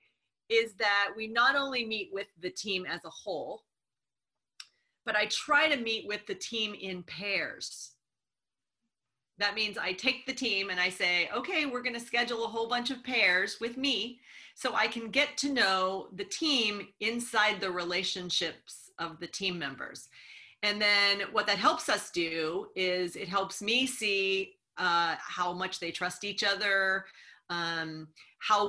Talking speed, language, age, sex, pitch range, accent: 165 wpm, English, 40-59, female, 175-230 Hz, American